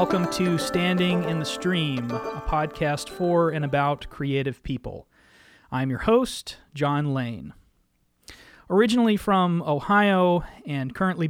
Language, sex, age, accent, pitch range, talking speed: English, male, 30-49, American, 135-175 Hz, 120 wpm